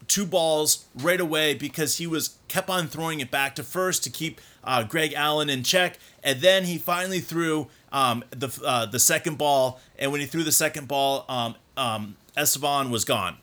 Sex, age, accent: male, 30-49, American